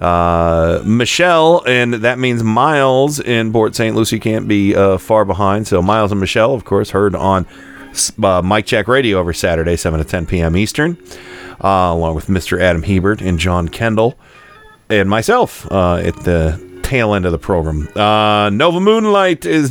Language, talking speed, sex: English, 175 wpm, male